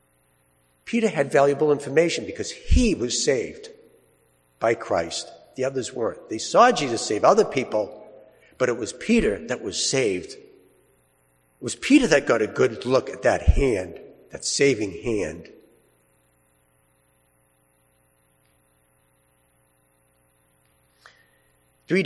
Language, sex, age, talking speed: English, male, 60-79, 110 wpm